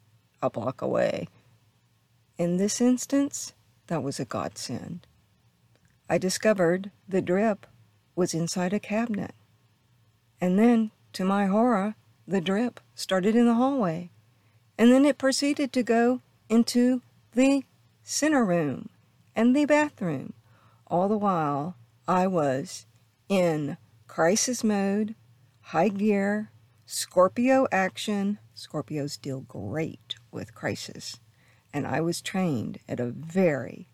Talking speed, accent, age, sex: 115 wpm, American, 50-69, female